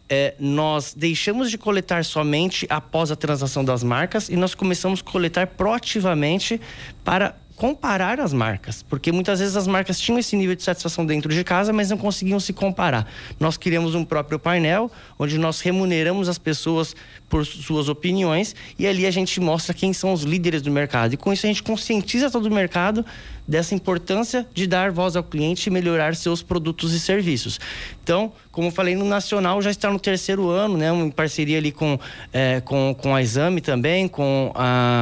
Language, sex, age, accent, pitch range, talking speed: Portuguese, male, 20-39, Brazilian, 140-185 Hz, 185 wpm